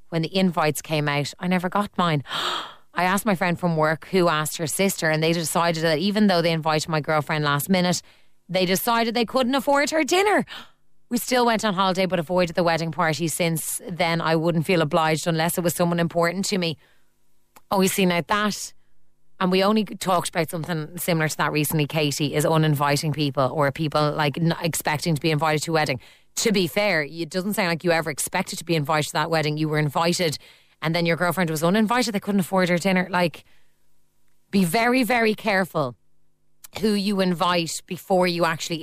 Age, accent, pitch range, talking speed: 20-39, Irish, 155-200 Hz, 205 wpm